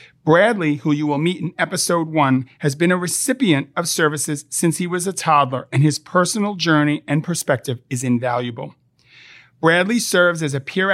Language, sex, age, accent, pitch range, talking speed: English, male, 40-59, American, 135-175 Hz, 175 wpm